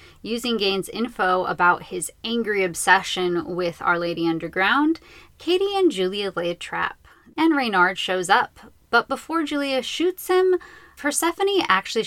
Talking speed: 140 wpm